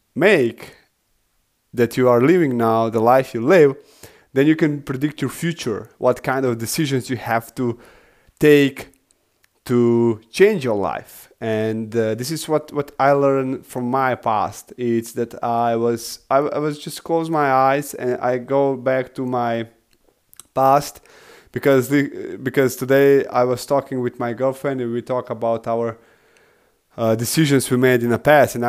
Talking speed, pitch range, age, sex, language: 165 wpm, 120-150 Hz, 20-39, male, English